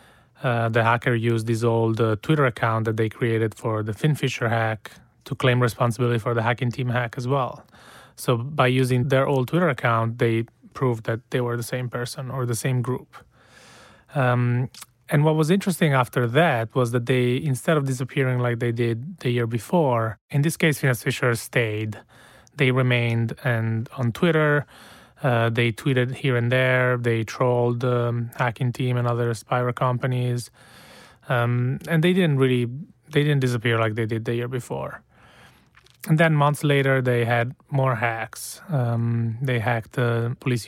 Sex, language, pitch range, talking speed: male, English, 120-135 Hz, 170 wpm